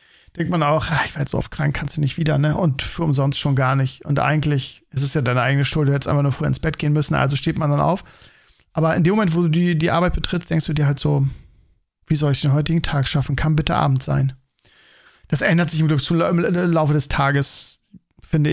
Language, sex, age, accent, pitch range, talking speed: German, male, 40-59, German, 145-175 Hz, 255 wpm